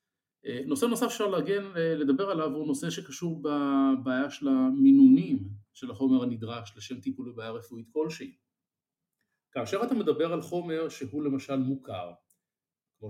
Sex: male